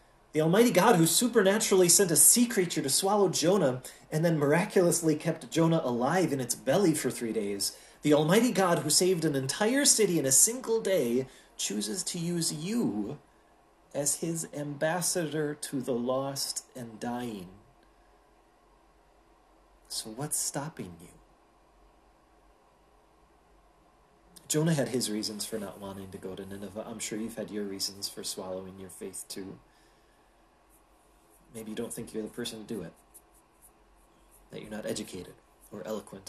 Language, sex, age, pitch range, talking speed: English, male, 30-49, 105-165 Hz, 150 wpm